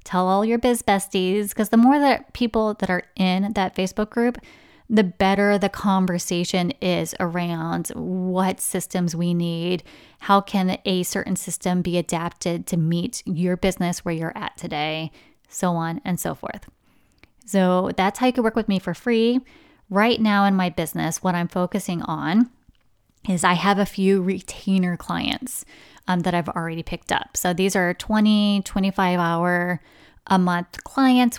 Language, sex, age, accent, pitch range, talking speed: English, female, 20-39, American, 175-210 Hz, 165 wpm